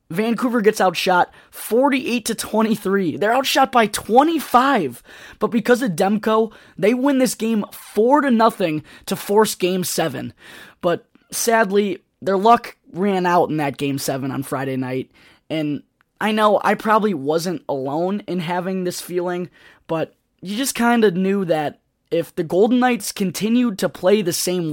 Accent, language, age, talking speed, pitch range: American, English, 20-39, 160 wpm, 155-210 Hz